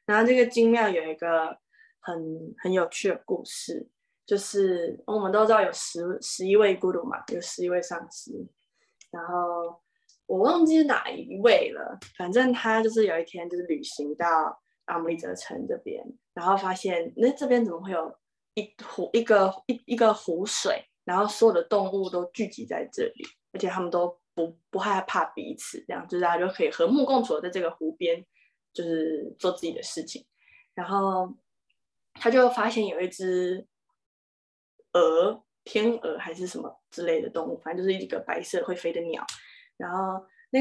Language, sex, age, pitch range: Chinese, female, 10-29, 170-245 Hz